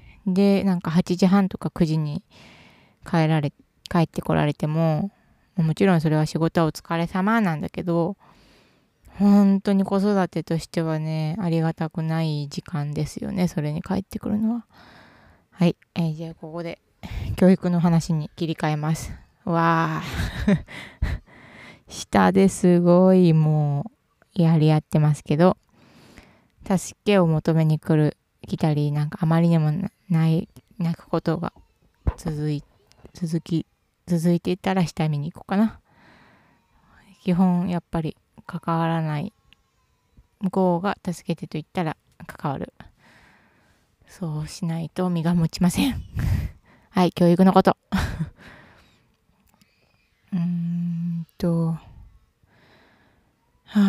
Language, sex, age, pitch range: Japanese, female, 20-39, 155-185 Hz